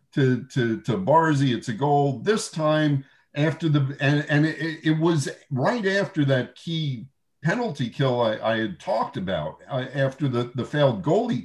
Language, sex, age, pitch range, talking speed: English, male, 50-69, 125-155 Hz, 175 wpm